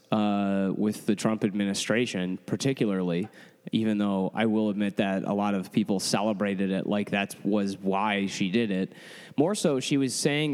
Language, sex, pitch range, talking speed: English, male, 105-130 Hz, 170 wpm